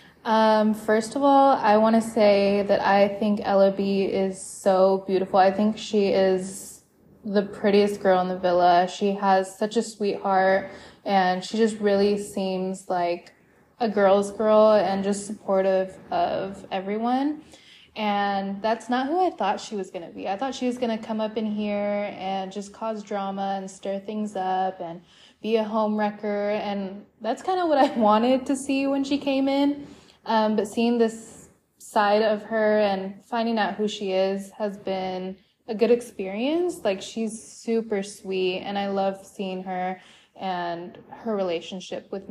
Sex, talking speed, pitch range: female, 175 wpm, 195-225 Hz